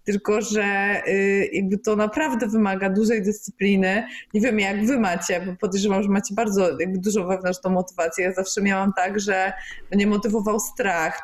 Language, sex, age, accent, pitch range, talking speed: Polish, female, 20-39, native, 185-225 Hz, 160 wpm